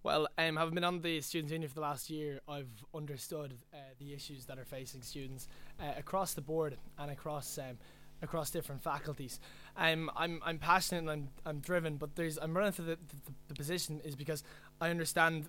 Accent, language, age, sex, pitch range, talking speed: Irish, English, 20-39, male, 145-165 Hz, 200 wpm